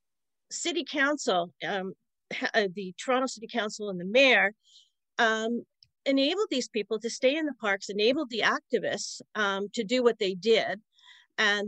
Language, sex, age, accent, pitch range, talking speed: English, female, 50-69, American, 200-275 Hz, 150 wpm